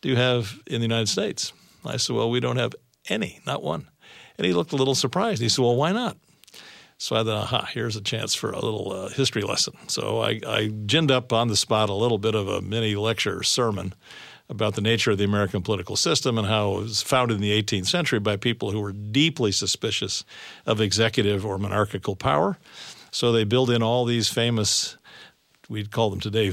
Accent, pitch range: American, 105-125 Hz